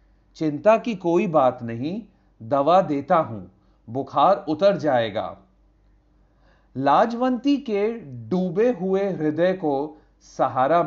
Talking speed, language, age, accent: 100 wpm, Hindi, 40-59, native